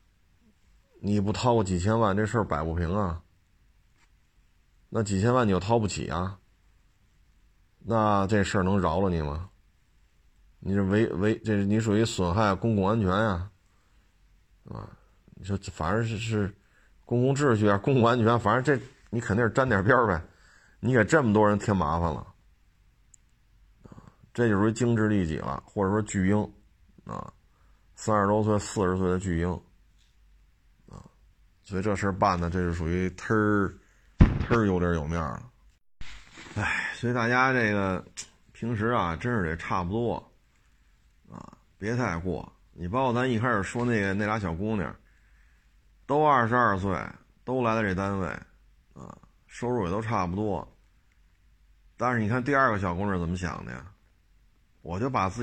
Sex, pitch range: male, 90-110 Hz